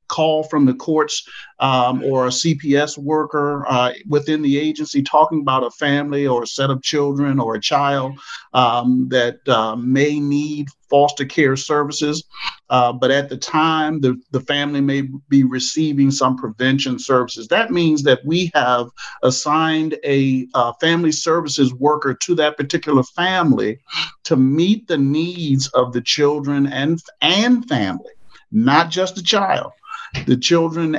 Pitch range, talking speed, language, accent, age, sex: 130-155 Hz, 150 wpm, English, American, 50-69, male